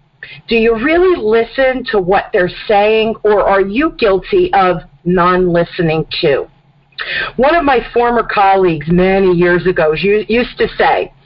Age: 40-59